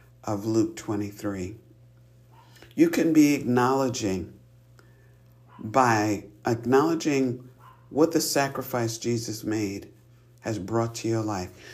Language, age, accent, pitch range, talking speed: English, 50-69, American, 110-130 Hz, 95 wpm